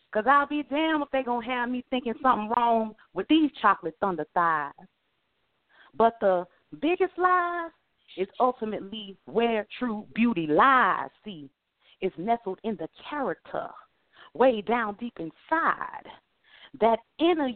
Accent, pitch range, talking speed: American, 205-285 Hz, 140 wpm